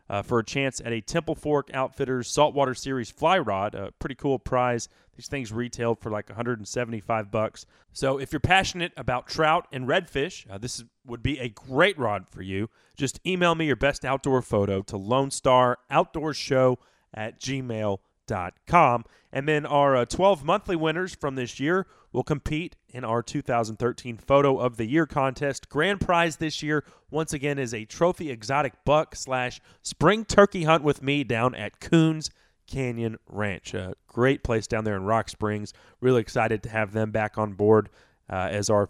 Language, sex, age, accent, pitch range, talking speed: English, male, 30-49, American, 115-155 Hz, 180 wpm